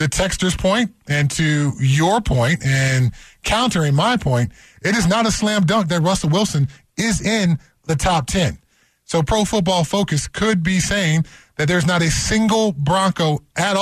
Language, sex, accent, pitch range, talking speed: English, male, American, 130-180 Hz, 170 wpm